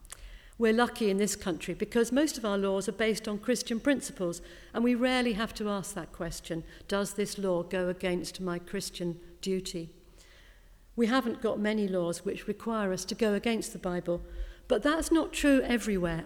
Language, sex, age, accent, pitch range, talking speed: English, female, 50-69, British, 190-250 Hz, 180 wpm